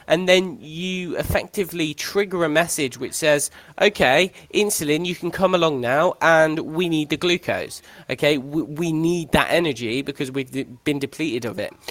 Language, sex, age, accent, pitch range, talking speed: English, male, 20-39, British, 135-170 Hz, 165 wpm